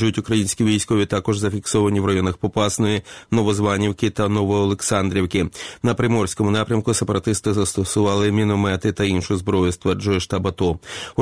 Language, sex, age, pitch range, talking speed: Ukrainian, male, 30-49, 105-115 Hz, 130 wpm